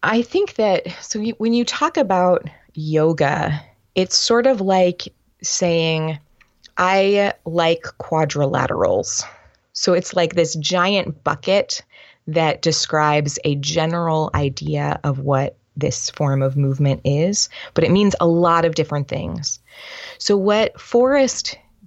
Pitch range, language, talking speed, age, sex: 145-185 Hz, English, 125 wpm, 20-39, female